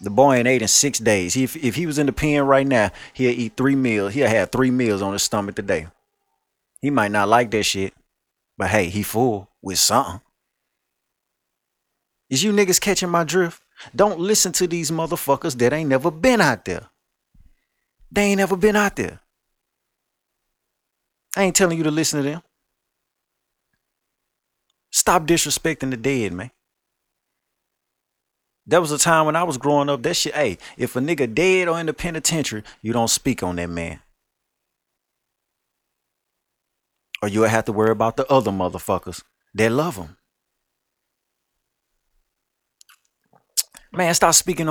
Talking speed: 155 wpm